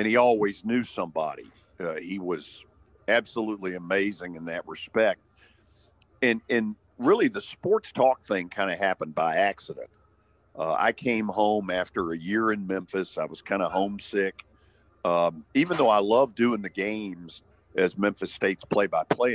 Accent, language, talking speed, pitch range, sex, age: American, English, 155 wpm, 95-115 Hz, male, 50-69